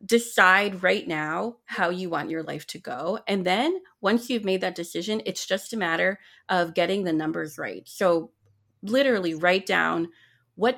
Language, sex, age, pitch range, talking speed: English, female, 30-49, 175-235 Hz, 175 wpm